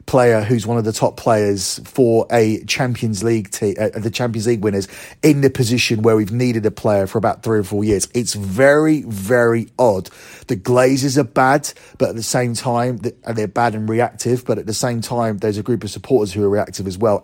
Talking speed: 215 wpm